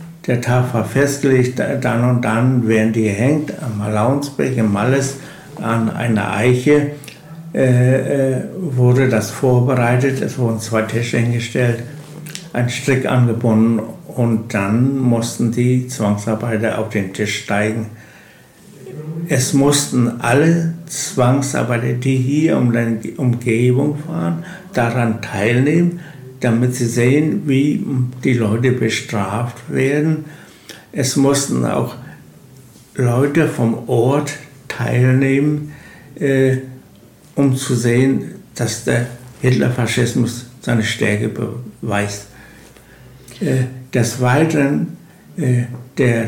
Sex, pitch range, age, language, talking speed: male, 115-140 Hz, 60-79, German, 105 wpm